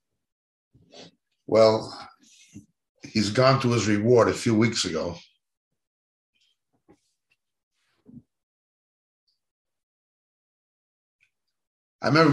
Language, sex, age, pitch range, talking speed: English, male, 60-79, 120-160 Hz, 60 wpm